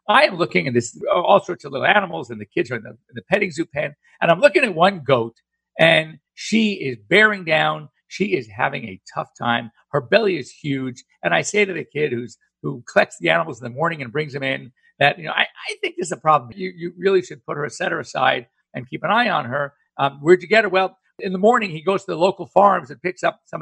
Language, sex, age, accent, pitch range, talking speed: English, male, 50-69, American, 130-185 Hz, 260 wpm